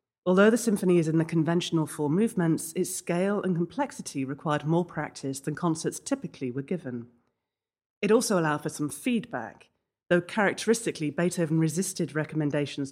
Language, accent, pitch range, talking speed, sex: English, British, 140-185 Hz, 150 wpm, female